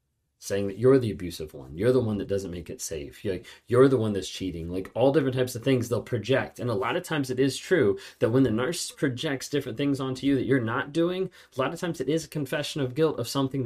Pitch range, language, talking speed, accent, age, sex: 105-130 Hz, English, 265 wpm, American, 30-49, male